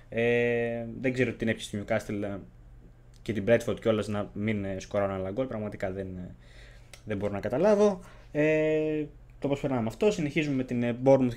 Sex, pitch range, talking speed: male, 105-135 Hz, 170 wpm